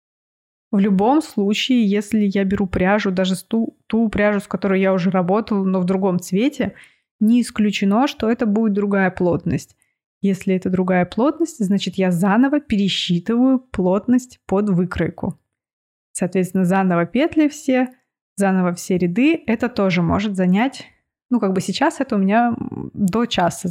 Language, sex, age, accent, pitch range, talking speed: Russian, female, 20-39, native, 185-235 Hz, 145 wpm